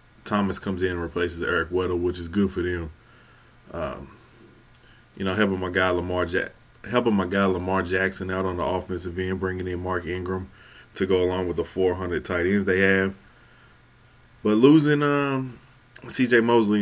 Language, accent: English, American